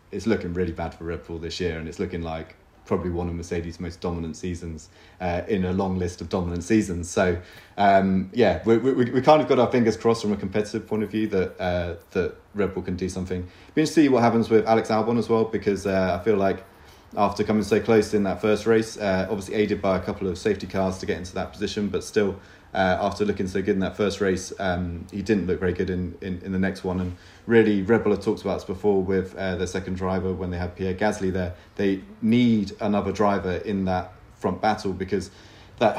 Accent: British